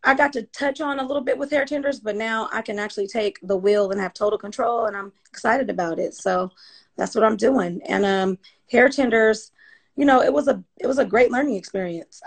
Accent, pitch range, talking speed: American, 195-255 Hz, 235 wpm